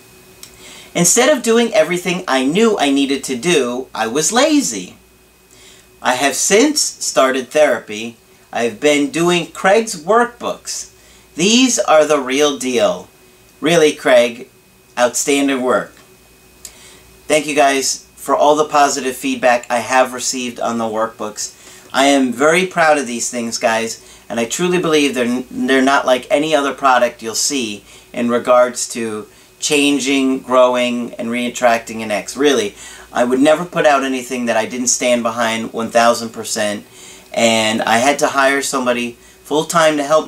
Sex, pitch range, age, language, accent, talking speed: male, 120-150 Hz, 40-59, English, American, 145 wpm